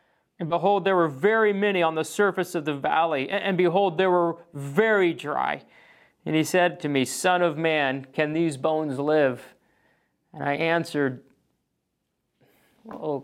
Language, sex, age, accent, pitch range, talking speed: English, male, 40-59, American, 170-210 Hz, 155 wpm